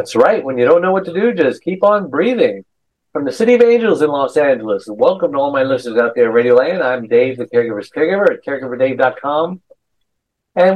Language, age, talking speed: English, 60-79, 220 wpm